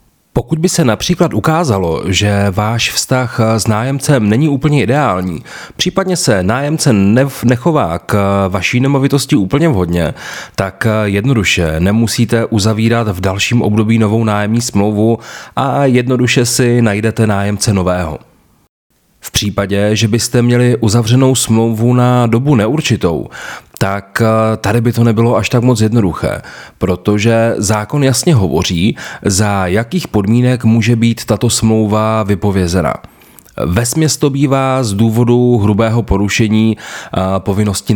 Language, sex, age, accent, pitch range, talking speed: Czech, male, 30-49, native, 100-120 Hz, 120 wpm